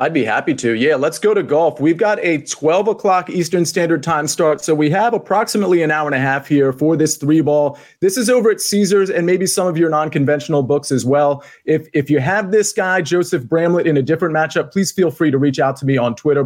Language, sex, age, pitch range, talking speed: English, male, 30-49, 145-180 Hz, 250 wpm